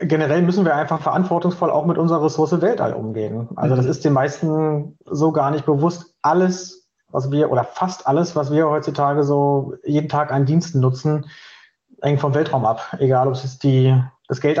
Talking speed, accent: 180 wpm, German